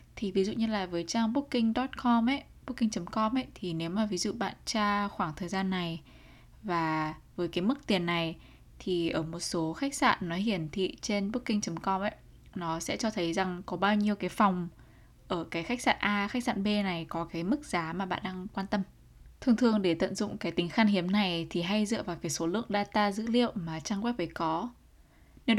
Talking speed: 220 wpm